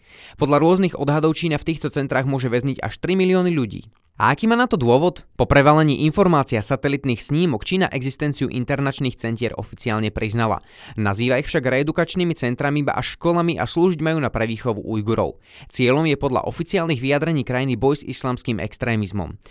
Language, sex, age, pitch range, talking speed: Slovak, male, 20-39, 120-155 Hz, 165 wpm